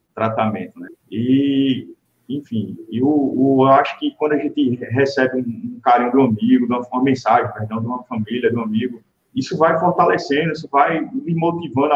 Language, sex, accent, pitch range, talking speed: Portuguese, male, Brazilian, 130-195 Hz, 170 wpm